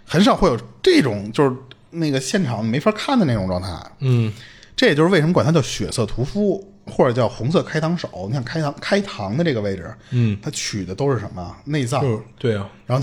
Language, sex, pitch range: Chinese, male, 105-150 Hz